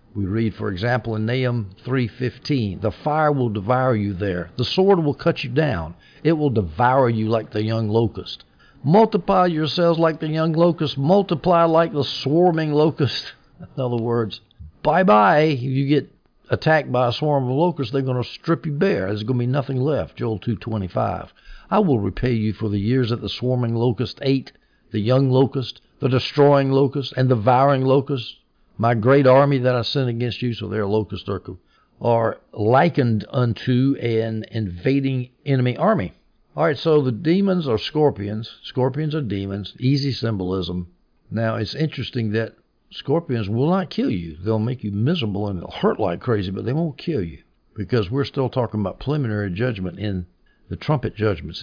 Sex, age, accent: male, 60-79, American